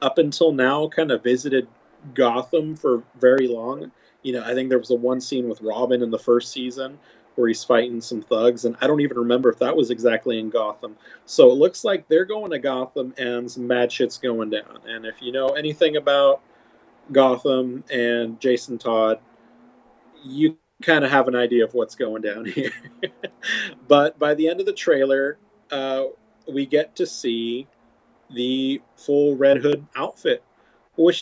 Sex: male